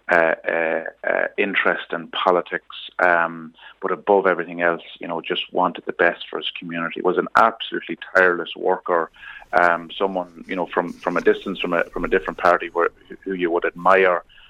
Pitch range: 85-90 Hz